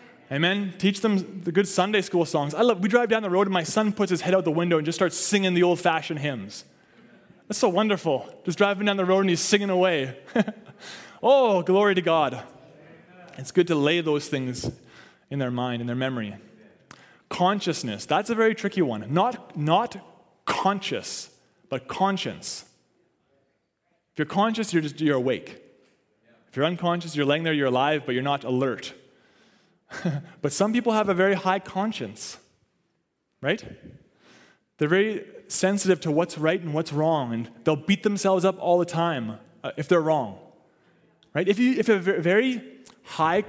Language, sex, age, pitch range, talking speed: English, male, 20-39, 150-200 Hz, 180 wpm